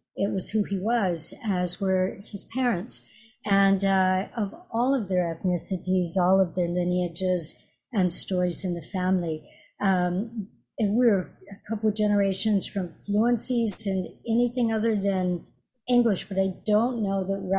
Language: English